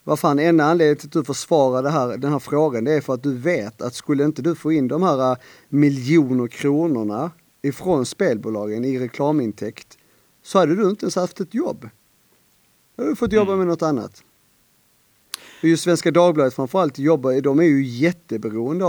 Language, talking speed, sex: Swedish, 170 wpm, male